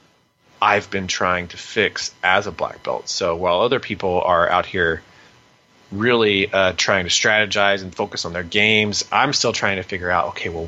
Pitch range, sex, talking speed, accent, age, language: 95-110 Hz, male, 190 wpm, American, 30-49, English